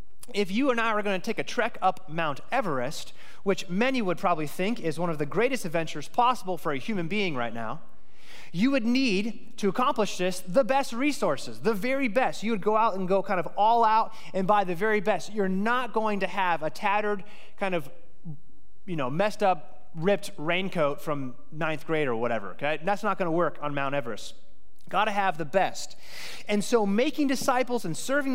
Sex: male